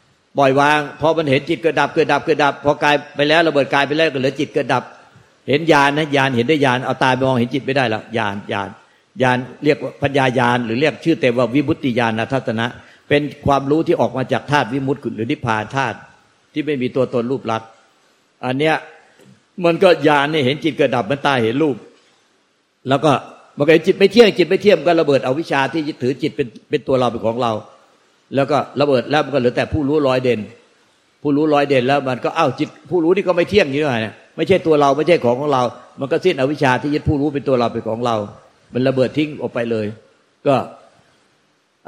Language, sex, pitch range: Thai, male, 125-150 Hz